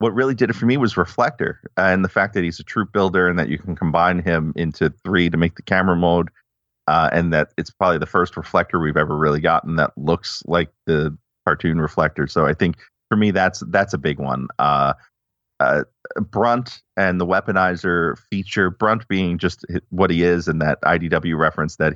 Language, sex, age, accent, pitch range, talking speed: English, male, 30-49, American, 75-95 Hz, 205 wpm